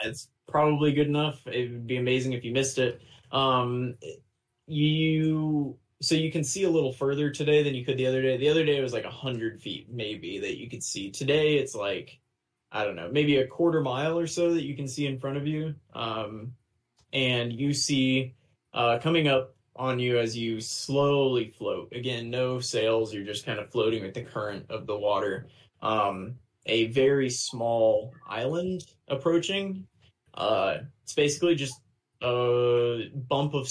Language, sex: English, male